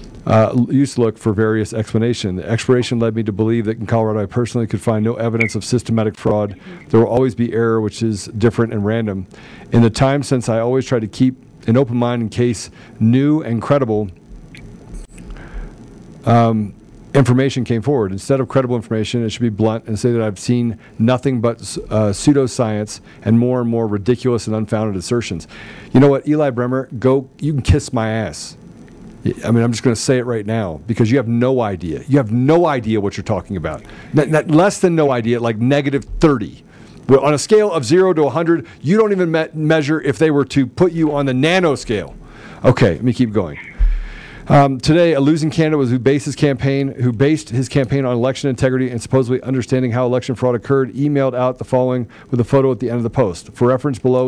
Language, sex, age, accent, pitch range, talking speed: English, male, 50-69, American, 110-135 Hz, 210 wpm